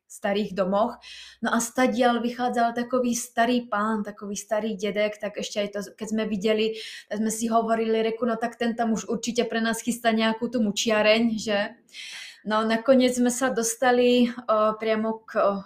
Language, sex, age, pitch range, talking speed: Slovak, female, 20-39, 205-235 Hz, 175 wpm